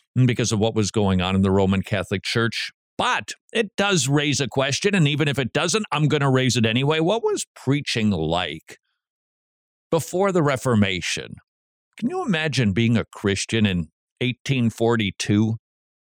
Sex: male